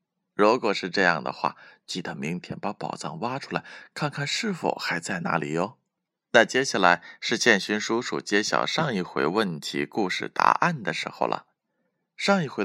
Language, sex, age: Chinese, male, 20-39